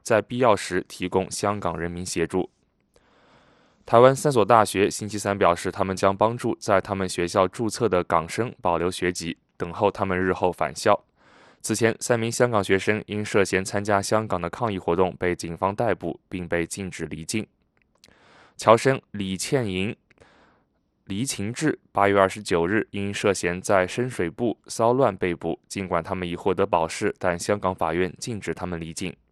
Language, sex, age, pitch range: English, male, 20-39, 90-110 Hz